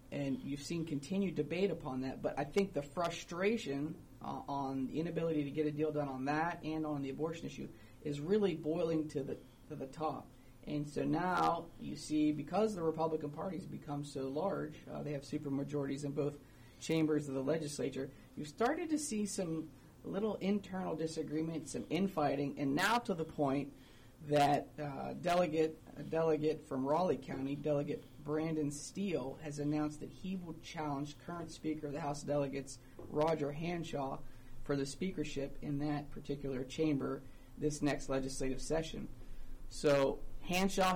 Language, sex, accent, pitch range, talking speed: English, male, American, 135-160 Hz, 165 wpm